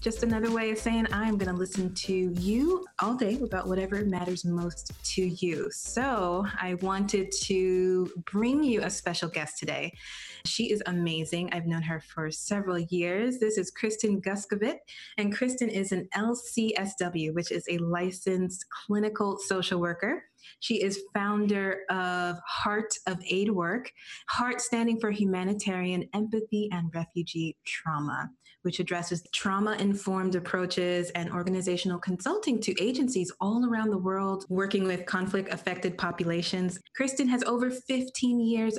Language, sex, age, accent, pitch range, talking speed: English, female, 20-39, American, 180-215 Hz, 140 wpm